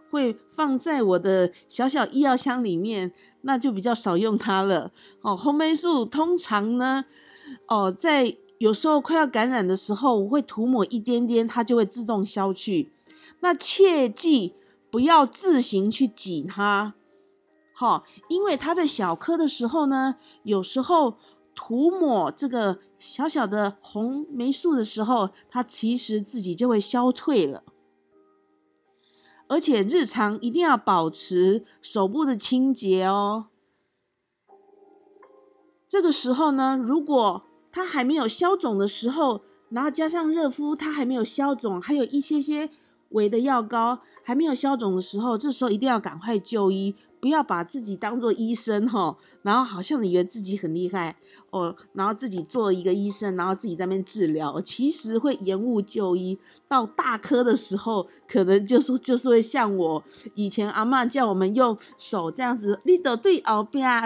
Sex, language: female, Chinese